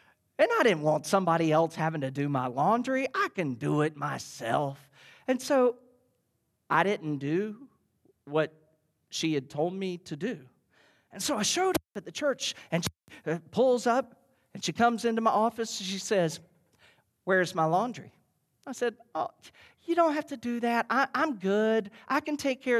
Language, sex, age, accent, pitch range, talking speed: English, male, 40-59, American, 145-230 Hz, 180 wpm